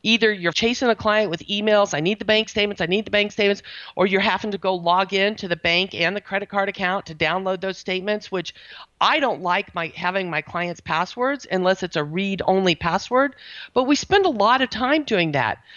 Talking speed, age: 225 wpm, 50-69